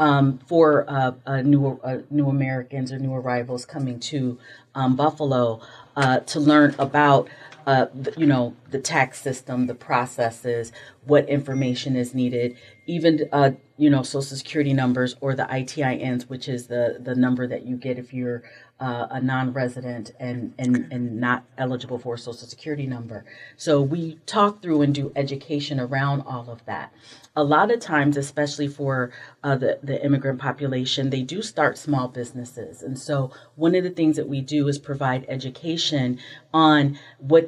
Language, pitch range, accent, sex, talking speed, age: English, 125-145 Hz, American, female, 170 wpm, 40-59